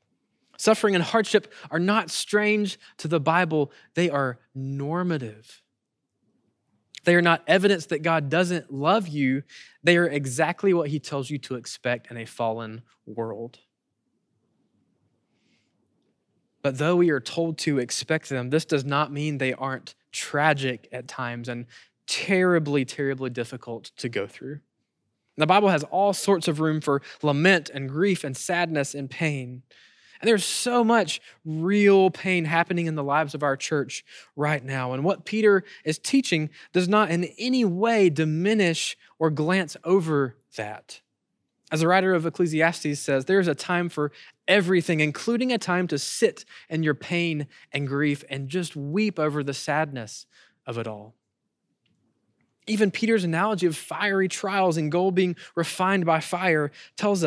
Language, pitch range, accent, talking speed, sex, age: English, 140-185 Hz, American, 155 wpm, male, 20-39